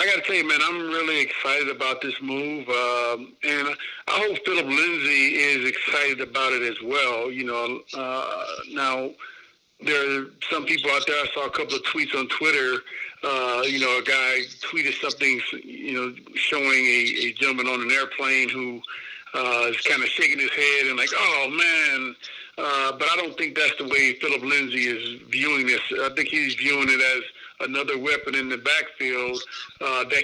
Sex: male